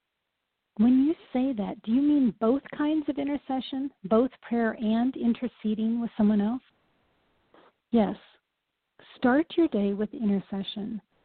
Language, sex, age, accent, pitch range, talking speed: English, female, 40-59, American, 210-260 Hz, 130 wpm